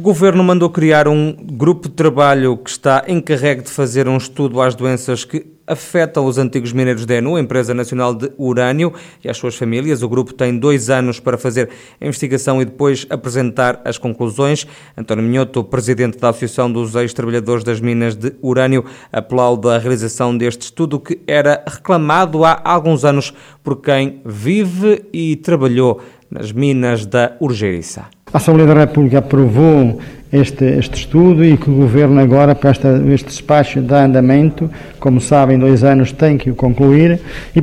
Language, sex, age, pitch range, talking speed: Portuguese, male, 20-39, 130-170 Hz, 170 wpm